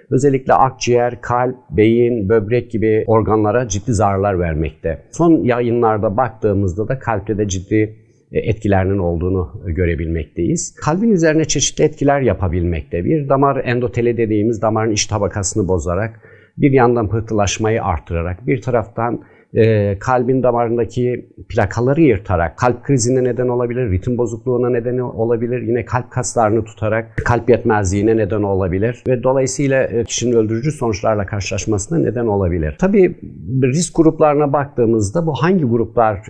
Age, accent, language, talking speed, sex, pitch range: 50-69, native, Turkish, 120 wpm, male, 105-125 Hz